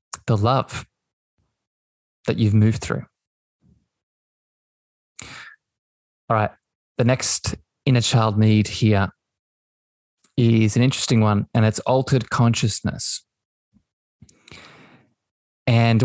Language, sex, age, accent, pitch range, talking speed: English, male, 20-39, Australian, 110-125 Hz, 85 wpm